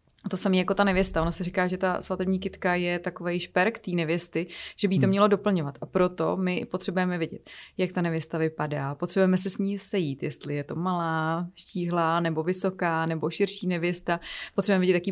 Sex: female